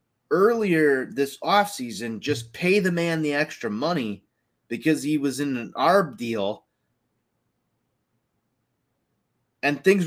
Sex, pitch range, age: male, 130-180 Hz, 30-49